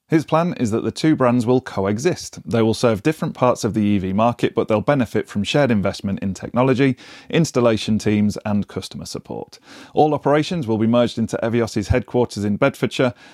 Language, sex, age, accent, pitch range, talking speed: English, male, 30-49, British, 105-135 Hz, 185 wpm